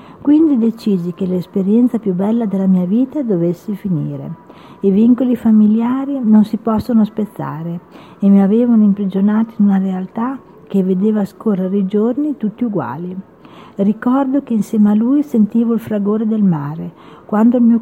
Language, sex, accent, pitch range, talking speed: Italian, female, native, 200-245 Hz, 150 wpm